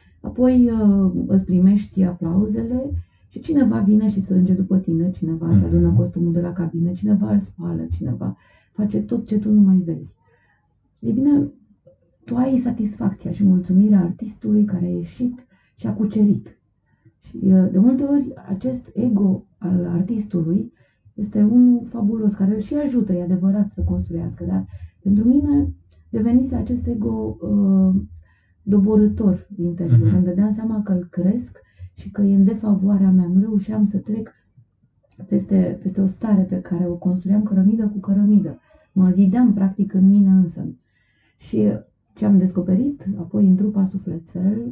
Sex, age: female, 30-49